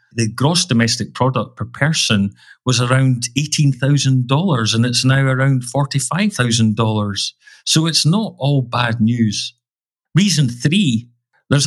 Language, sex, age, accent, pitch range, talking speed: English, male, 40-59, British, 115-150 Hz, 120 wpm